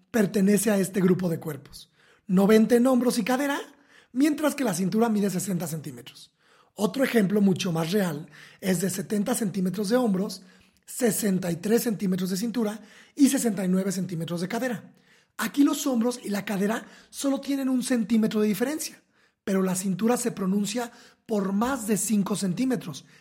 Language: Spanish